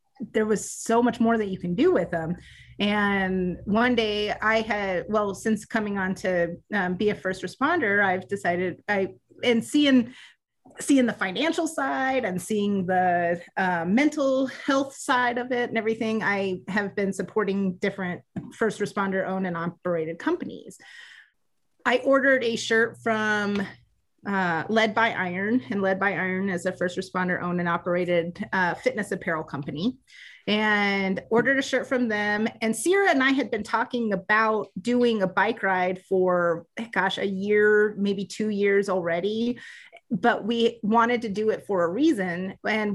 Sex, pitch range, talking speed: female, 190-235 Hz, 165 wpm